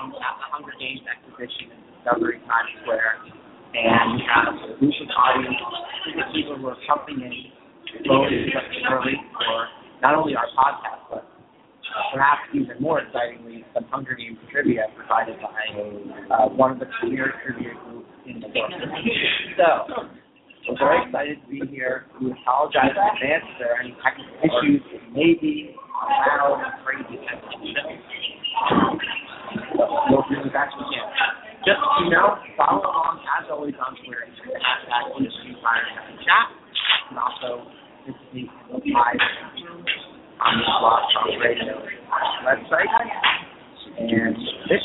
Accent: American